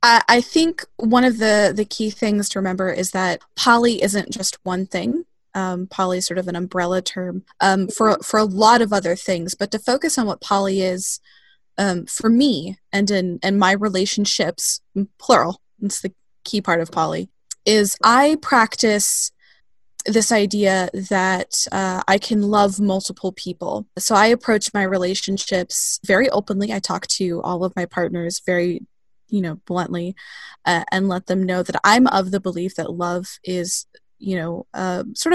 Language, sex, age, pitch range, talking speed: English, female, 20-39, 185-220 Hz, 175 wpm